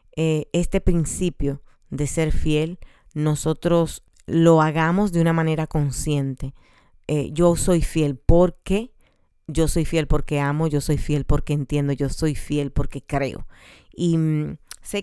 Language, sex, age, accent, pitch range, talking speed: Spanish, female, 30-49, American, 130-155 Hz, 130 wpm